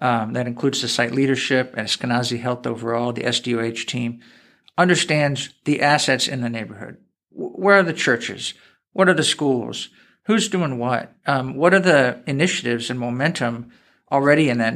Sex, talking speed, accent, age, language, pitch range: male, 160 wpm, American, 50-69, English, 125-155 Hz